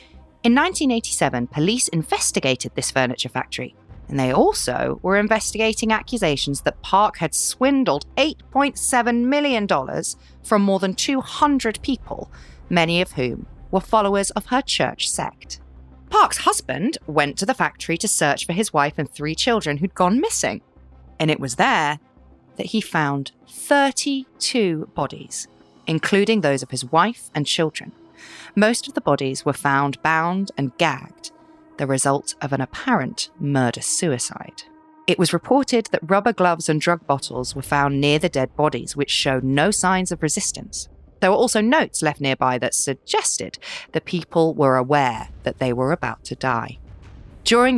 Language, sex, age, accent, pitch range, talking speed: English, female, 40-59, British, 135-220 Hz, 150 wpm